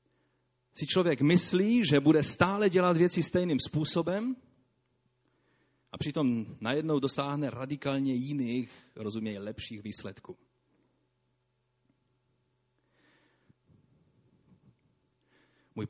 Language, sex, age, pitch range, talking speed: Czech, male, 30-49, 105-140 Hz, 75 wpm